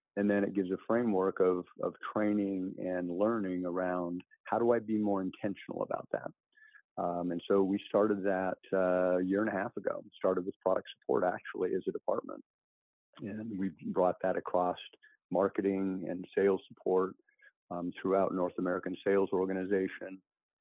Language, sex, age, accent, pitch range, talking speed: English, male, 50-69, American, 90-100 Hz, 160 wpm